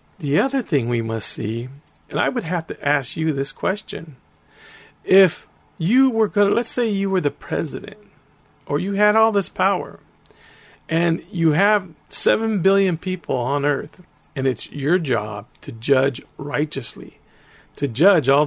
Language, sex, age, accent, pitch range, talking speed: English, male, 40-59, American, 140-190 Hz, 160 wpm